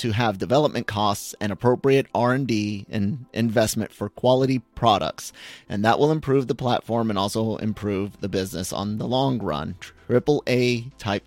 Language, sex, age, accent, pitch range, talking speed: English, male, 30-49, American, 100-125 Hz, 160 wpm